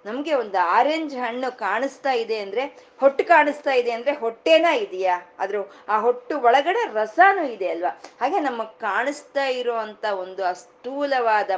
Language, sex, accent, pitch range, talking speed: Kannada, female, native, 200-270 Hz, 125 wpm